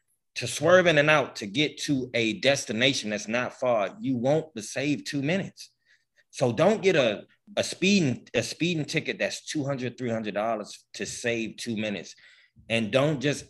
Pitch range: 110-145 Hz